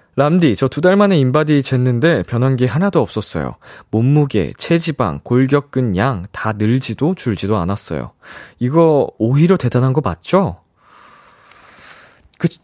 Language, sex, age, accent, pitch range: Korean, male, 20-39, native, 110-160 Hz